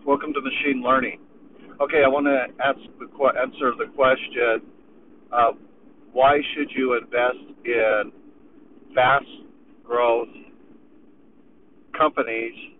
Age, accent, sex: 50-69, American, male